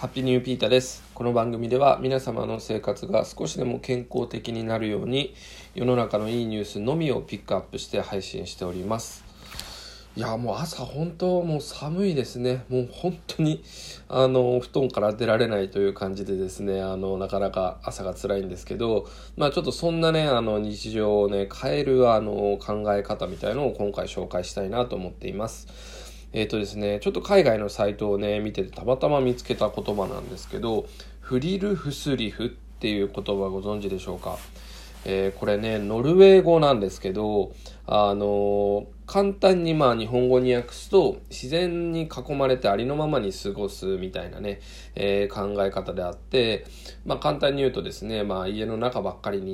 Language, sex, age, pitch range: Japanese, male, 20-39, 100-130 Hz